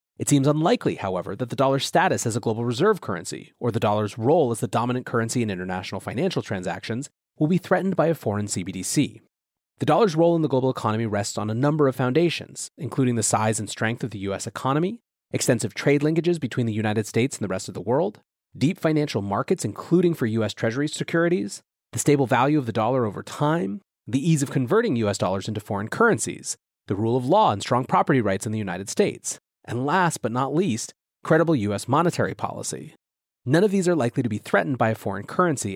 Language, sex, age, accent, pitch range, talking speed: English, male, 30-49, American, 110-150 Hz, 210 wpm